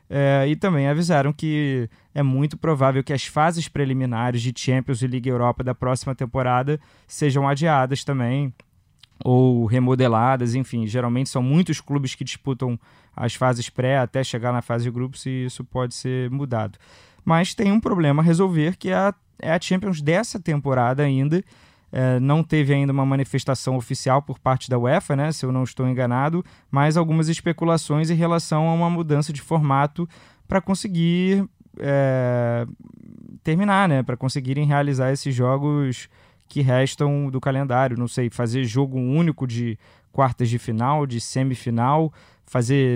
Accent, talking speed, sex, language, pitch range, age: Brazilian, 155 wpm, male, Portuguese, 125-150 Hz, 20-39